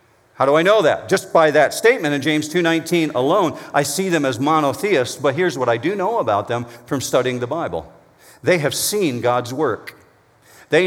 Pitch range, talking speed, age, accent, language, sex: 125-170 Hz, 200 wpm, 50-69, American, English, male